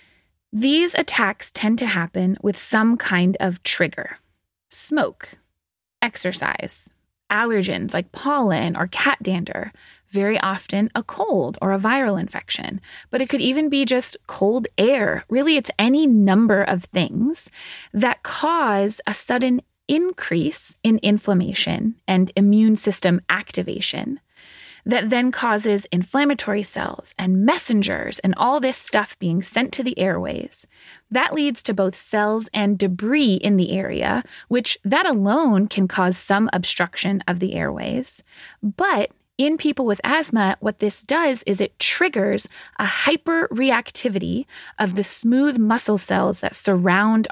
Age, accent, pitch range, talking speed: 20-39, American, 195-260 Hz, 135 wpm